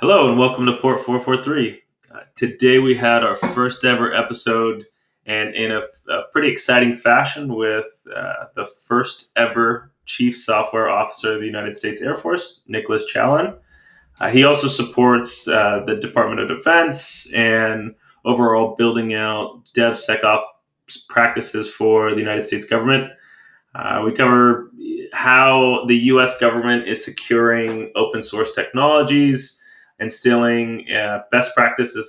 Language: English